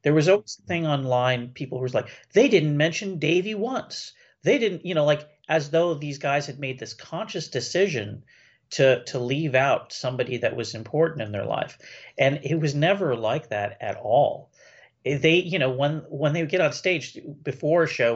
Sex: male